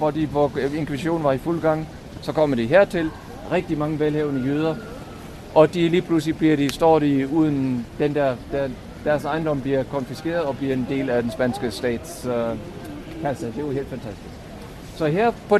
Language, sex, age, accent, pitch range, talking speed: Danish, male, 60-79, German, 135-180 Hz, 170 wpm